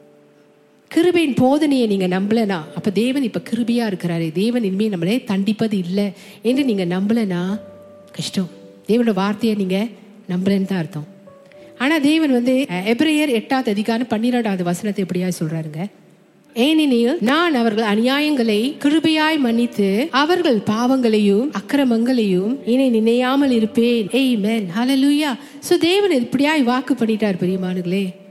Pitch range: 190-250 Hz